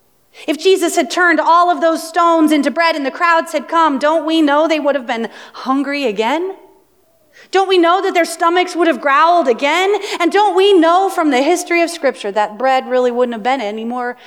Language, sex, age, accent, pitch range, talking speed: English, female, 30-49, American, 255-340 Hz, 210 wpm